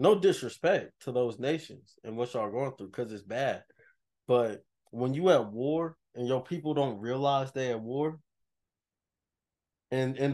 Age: 20-39